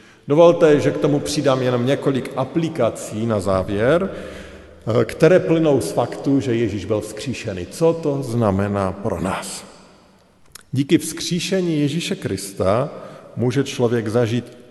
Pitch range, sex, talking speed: 110-150 Hz, male, 120 wpm